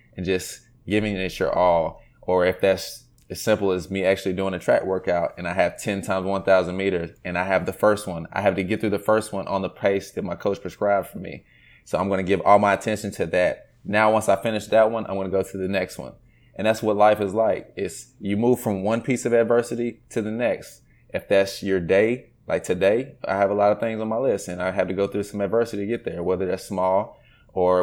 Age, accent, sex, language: 20-39, American, male, English